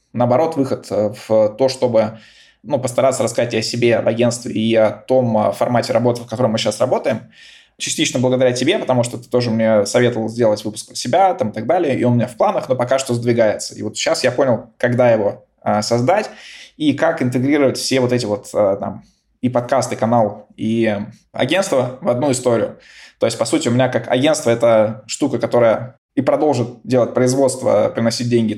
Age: 20-39